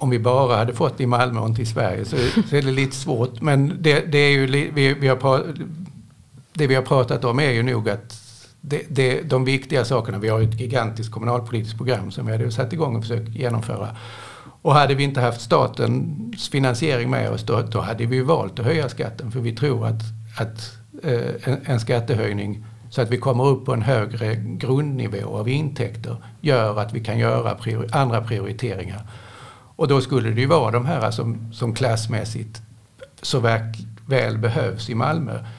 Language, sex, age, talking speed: Swedish, male, 60-79, 195 wpm